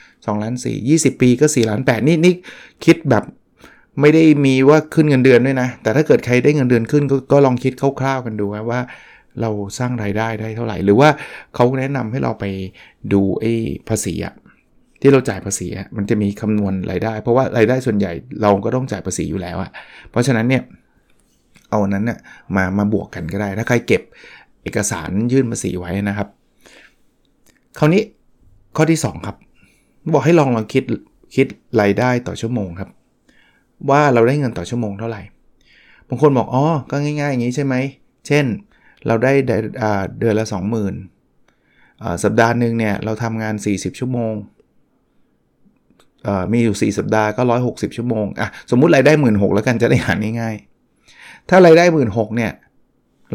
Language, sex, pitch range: Thai, male, 105-130 Hz